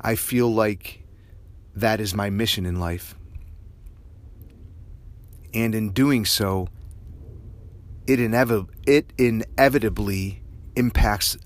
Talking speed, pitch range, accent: 95 wpm, 90-115 Hz, American